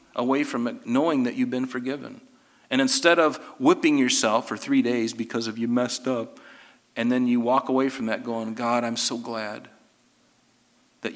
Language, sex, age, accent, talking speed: English, male, 40-59, American, 185 wpm